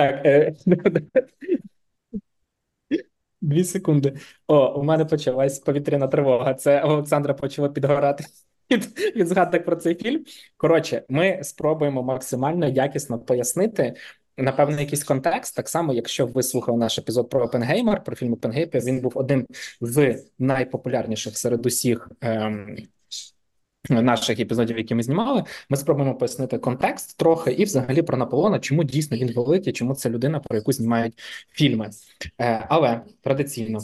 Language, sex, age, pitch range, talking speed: Ukrainian, male, 20-39, 115-150 Hz, 130 wpm